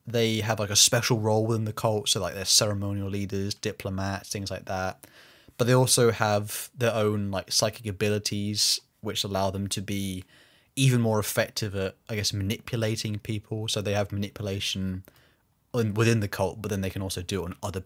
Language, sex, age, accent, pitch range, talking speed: English, male, 20-39, British, 100-120 Hz, 190 wpm